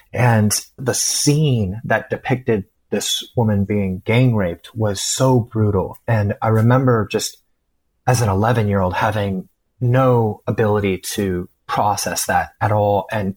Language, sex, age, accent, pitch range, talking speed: English, male, 30-49, American, 100-115 Hz, 130 wpm